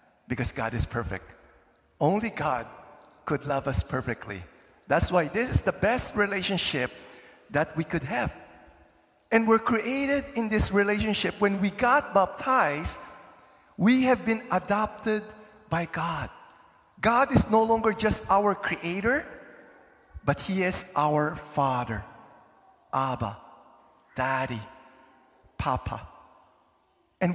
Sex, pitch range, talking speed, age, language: male, 160-245 Hz, 115 wpm, 50-69, English